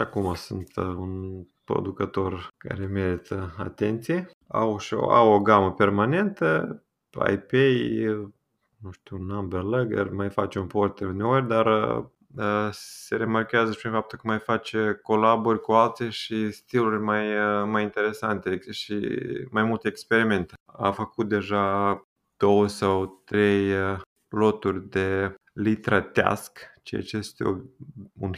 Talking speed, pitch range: 120 wpm, 95-110 Hz